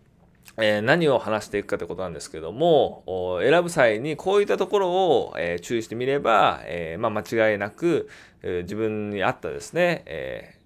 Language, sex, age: Japanese, male, 20-39